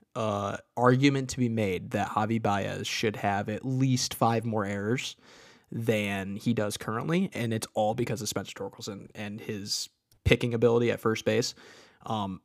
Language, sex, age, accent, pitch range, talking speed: English, male, 20-39, American, 105-125 Hz, 170 wpm